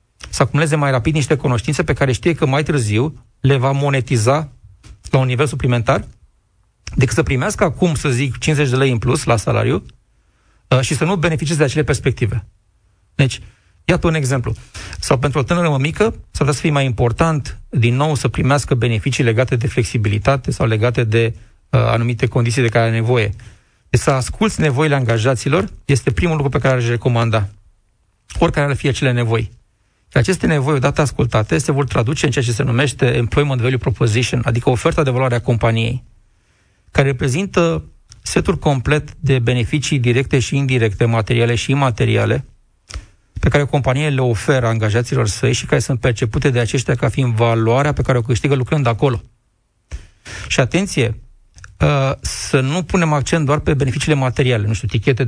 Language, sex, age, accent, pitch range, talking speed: Romanian, male, 40-59, native, 115-145 Hz, 170 wpm